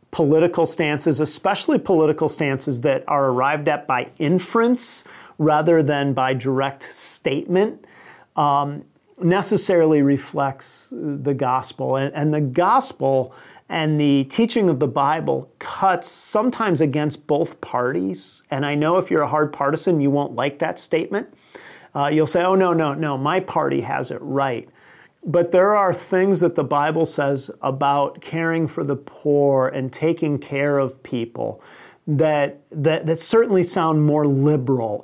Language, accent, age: English, American, 40-59